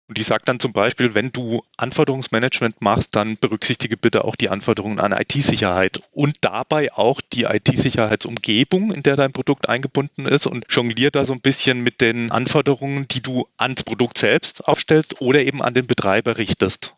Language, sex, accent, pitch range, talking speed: German, male, German, 105-130 Hz, 175 wpm